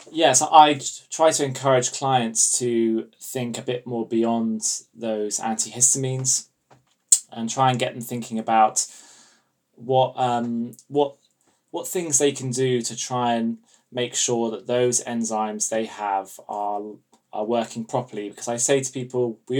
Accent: British